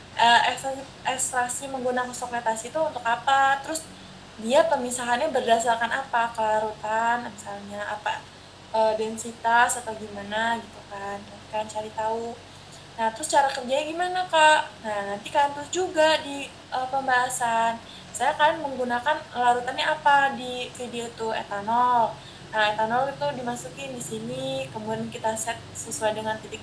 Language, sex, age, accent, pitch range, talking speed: Indonesian, female, 20-39, native, 225-280 Hz, 135 wpm